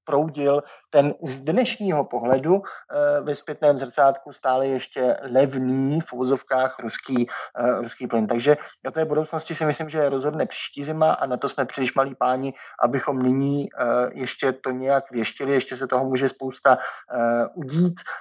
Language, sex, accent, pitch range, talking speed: Czech, male, native, 130-165 Hz, 160 wpm